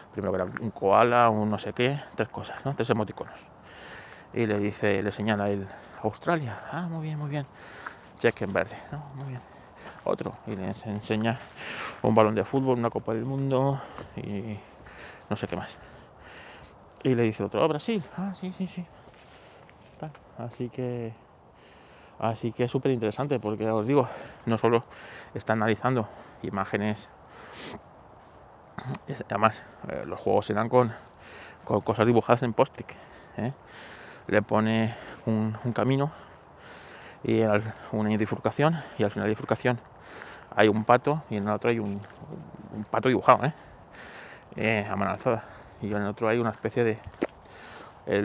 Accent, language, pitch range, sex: Spanish, Spanish, 105-125 Hz, male